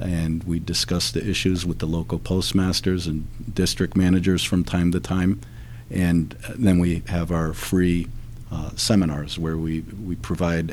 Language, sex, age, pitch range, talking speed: English, male, 50-69, 80-100 Hz, 155 wpm